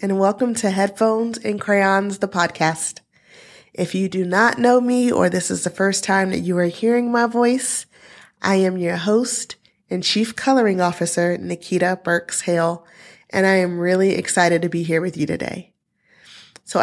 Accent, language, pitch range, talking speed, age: American, English, 170-205 Hz, 170 wpm, 20-39